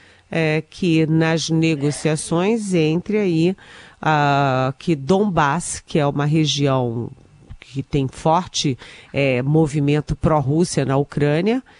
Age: 40-59